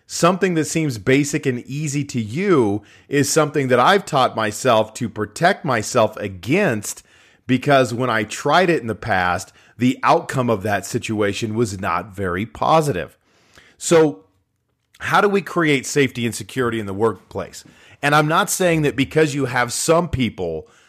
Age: 40-59